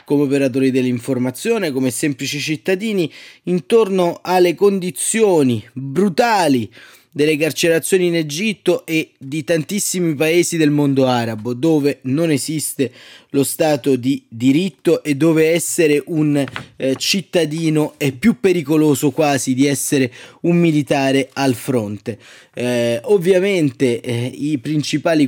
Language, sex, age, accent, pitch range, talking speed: Italian, male, 20-39, native, 135-165 Hz, 115 wpm